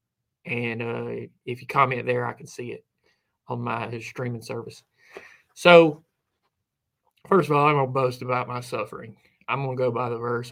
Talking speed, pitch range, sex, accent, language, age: 170 wpm, 115-130 Hz, male, American, English, 30-49